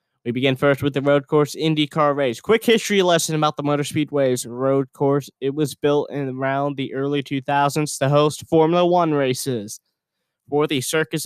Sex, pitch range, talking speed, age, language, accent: male, 135-160 Hz, 180 wpm, 20-39, English, American